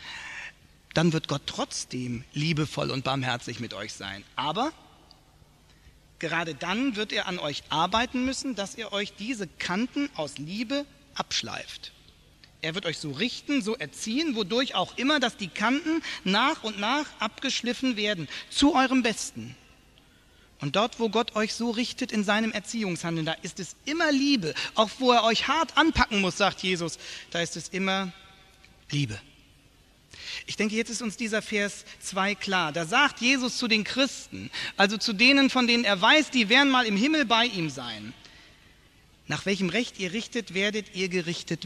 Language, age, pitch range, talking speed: English, 40-59, 160-240 Hz, 165 wpm